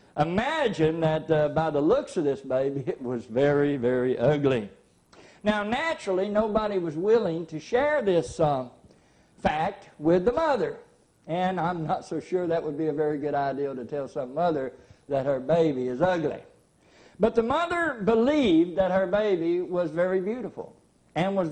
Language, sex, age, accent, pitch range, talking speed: English, male, 60-79, American, 135-190 Hz, 165 wpm